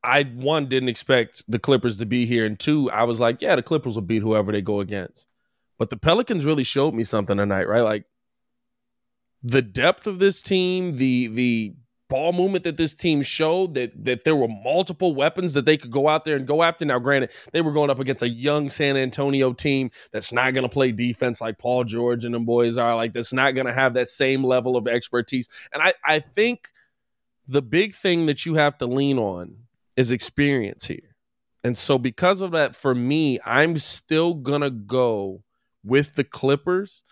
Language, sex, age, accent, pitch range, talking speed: English, male, 20-39, American, 120-150 Hz, 205 wpm